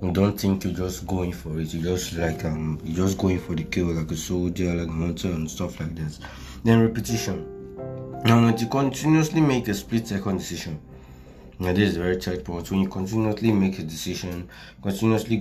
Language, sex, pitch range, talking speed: English, male, 85-100 Hz, 205 wpm